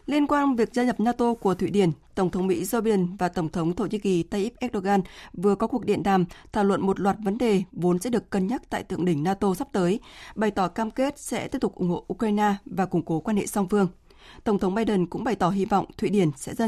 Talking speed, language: 265 wpm, Vietnamese